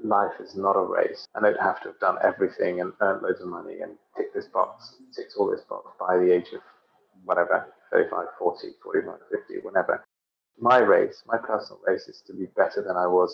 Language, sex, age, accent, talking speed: English, male, 30-49, British, 210 wpm